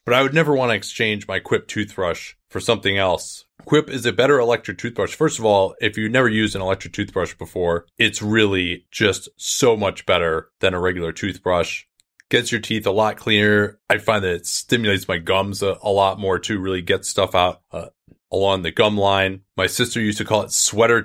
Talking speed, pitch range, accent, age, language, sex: 210 wpm, 95-120 Hz, American, 30-49, English, male